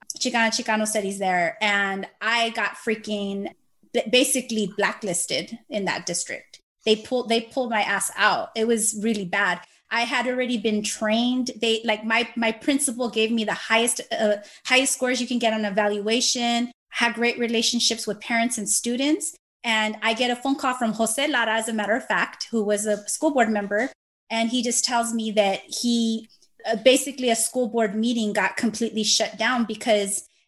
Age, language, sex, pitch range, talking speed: 20-39, English, female, 205-240 Hz, 175 wpm